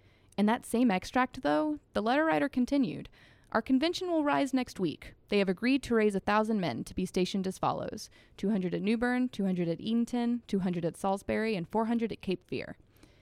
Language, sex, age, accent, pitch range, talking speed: English, female, 20-39, American, 170-225 Hz, 185 wpm